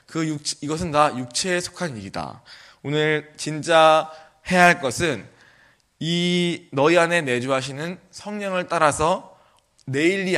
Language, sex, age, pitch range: Korean, male, 20-39, 120-160 Hz